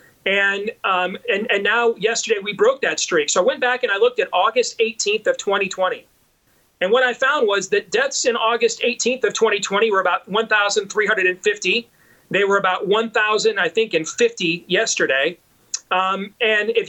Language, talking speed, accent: English, 175 wpm, American